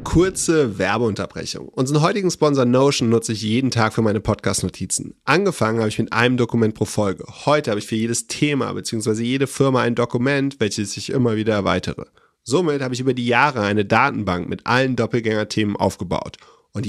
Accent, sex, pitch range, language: German, male, 105-130 Hz, German